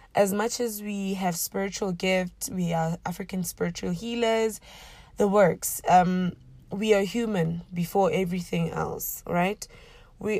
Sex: female